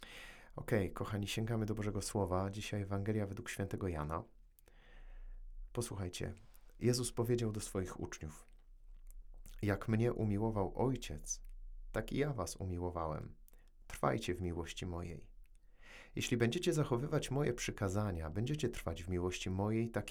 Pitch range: 90-110 Hz